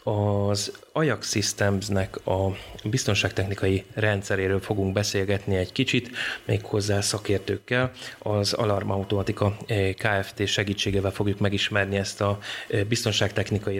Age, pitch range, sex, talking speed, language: 30-49, 100-110 Hz, male, 95 wpm, Hungarian